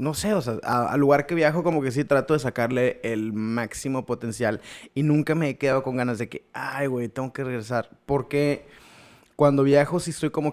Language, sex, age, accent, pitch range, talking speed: Spanish, male, 20-39, Mexican, 115-150 Hz, 210 wpm